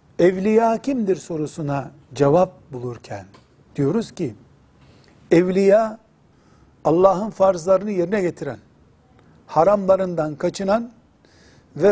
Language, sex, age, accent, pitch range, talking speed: Turkish, male, 60-79, native, 155-215 Hz, 75 wpm